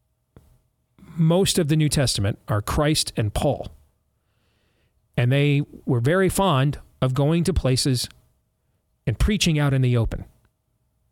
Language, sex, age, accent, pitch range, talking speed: English, male, 40-59, American, 120-165 Hz, 130 wpm